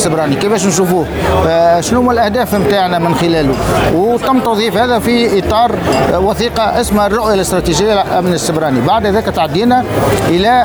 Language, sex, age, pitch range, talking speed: Arabic, male, 50-69, 180-225 Hz, 145 wpm